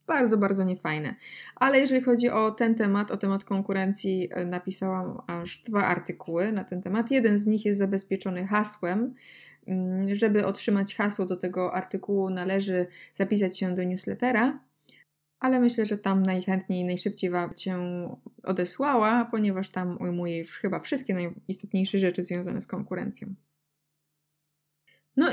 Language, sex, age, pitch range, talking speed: Polish, female, 20-39, 185-220 Hz, 135 wpm